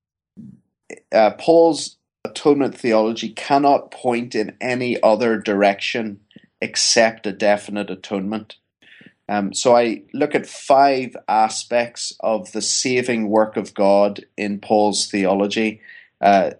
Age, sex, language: 30-49, male, English